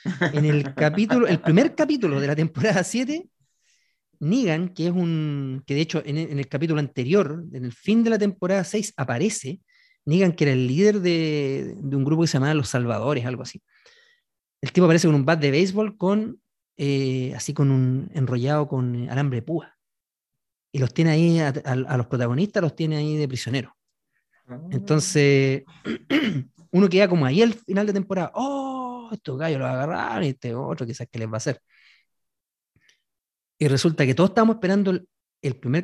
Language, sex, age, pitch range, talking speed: Spanish, male, 30-49, 135-200 Hz, 185 wpm